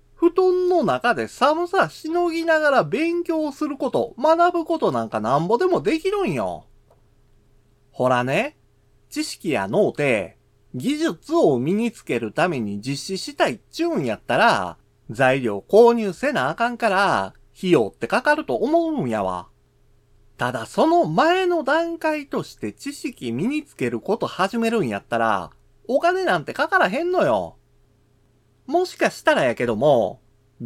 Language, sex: Japanese, male